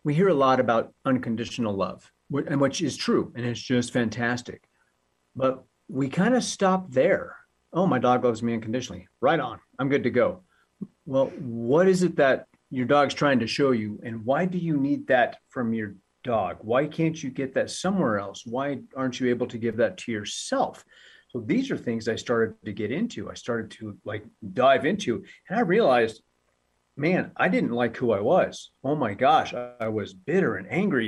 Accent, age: American, 40-59